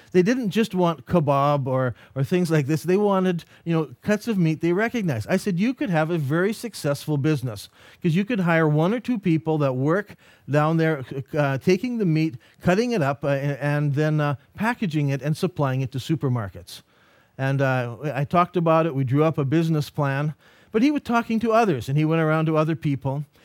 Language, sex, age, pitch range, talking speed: English, male, 40-59, 140-195 Hz, 215 wpm